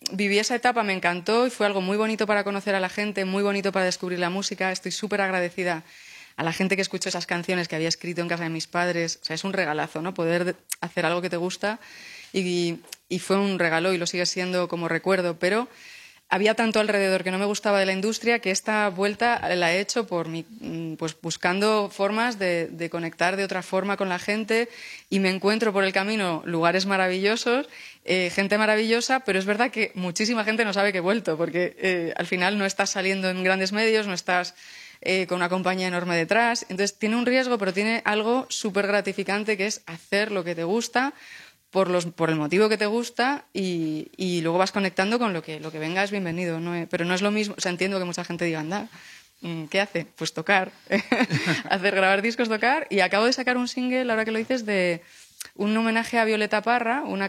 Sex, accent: female, Spanish